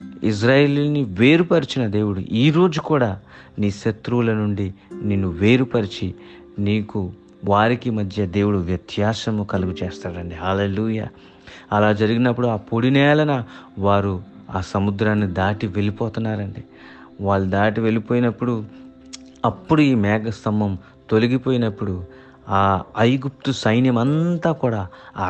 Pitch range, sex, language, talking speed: 95-130 Hz, male, English, 90 wpm